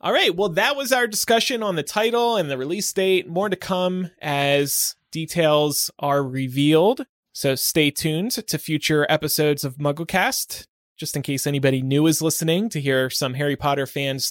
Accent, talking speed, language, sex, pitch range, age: American, 175 wpm, English, male, 140-180 Hz, 20-39